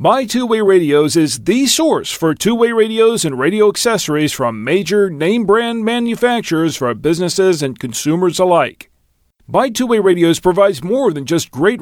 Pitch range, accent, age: 160-225 Hz, American, 40-59